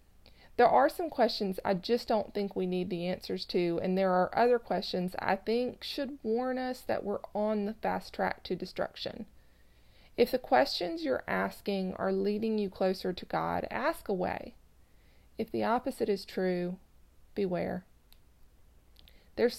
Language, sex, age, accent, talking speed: English, female, 30-49, American, 155 wpm